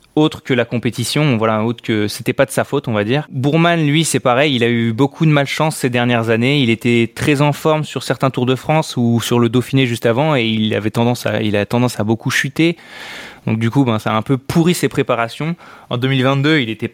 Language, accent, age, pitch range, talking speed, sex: French, French, 20-39, 115-135 Hz, 250 wpm, male